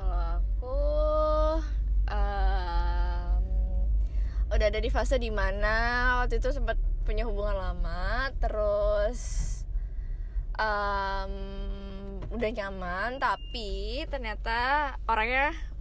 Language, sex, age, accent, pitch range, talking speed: Indonesian, female, 20-39, native, 195-245 Hz, 80 wpm